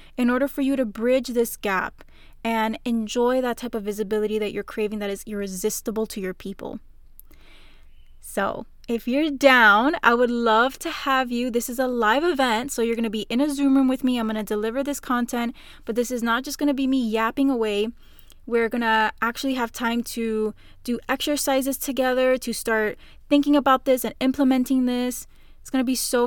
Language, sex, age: English, female, 10-29